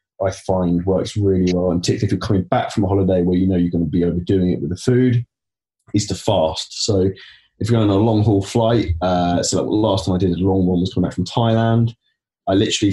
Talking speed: 255 wpm